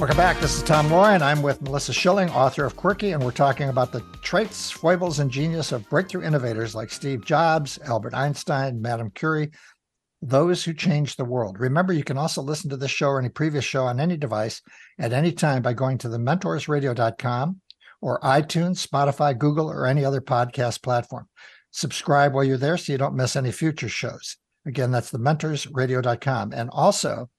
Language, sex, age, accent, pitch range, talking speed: English, male, 60-79, American, 125-155 Hz, 190 wpm